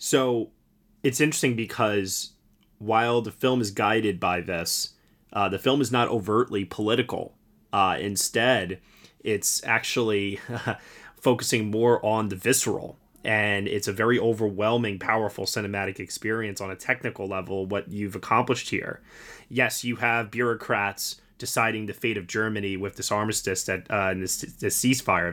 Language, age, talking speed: English, 20-39, 145 wpm